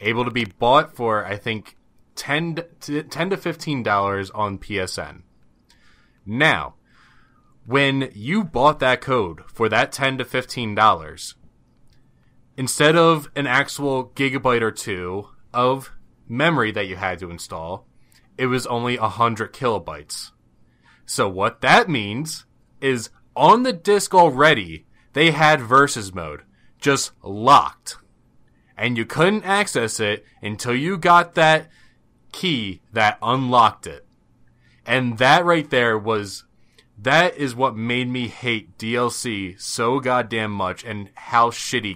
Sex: male